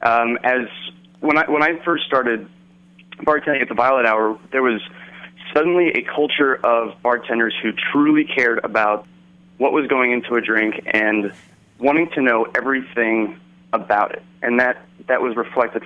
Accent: American